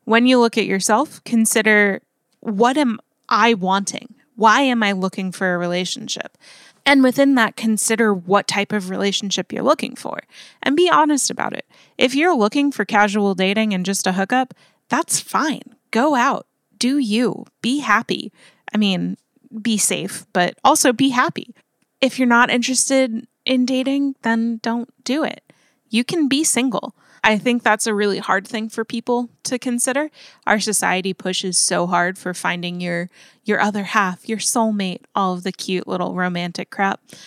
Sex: female